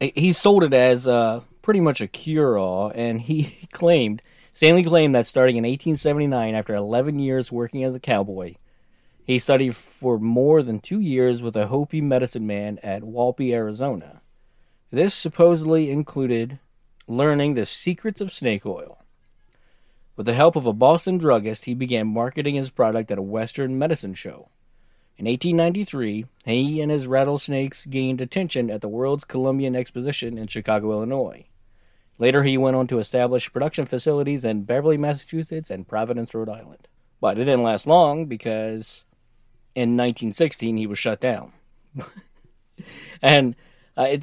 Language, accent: English, American